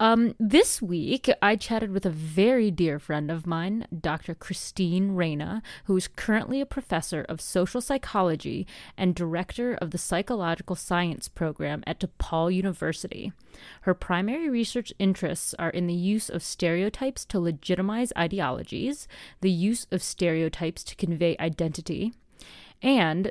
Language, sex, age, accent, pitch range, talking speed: English, female, 30-49, American, 170-215 Hz, 140 wpm